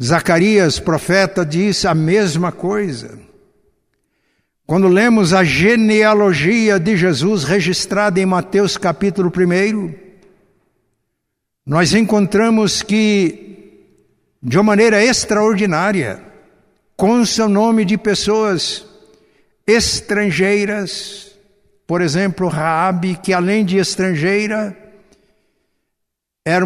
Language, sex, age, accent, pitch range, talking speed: Portuguese, male, 60-79, Brazilian, 155-200 Hz, 85 wpm